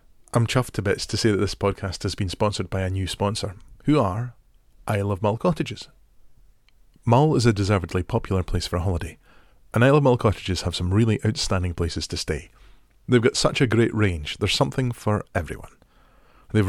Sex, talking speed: male, 195 wpm